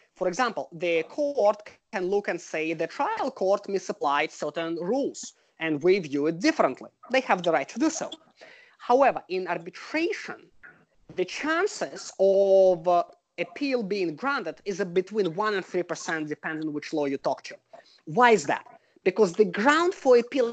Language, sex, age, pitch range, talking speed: English, male, 20-39, 180-260 Hz, 165 wpm